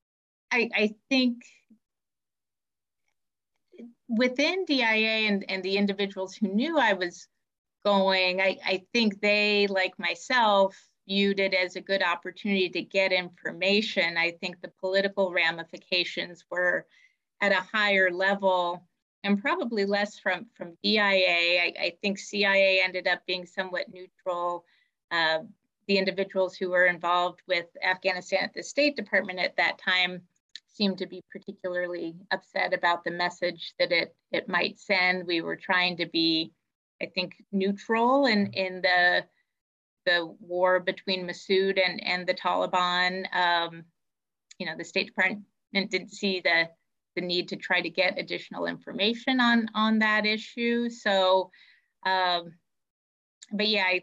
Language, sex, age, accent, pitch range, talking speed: English, female, 30-49, American, 180-205 Hz, 140 wpm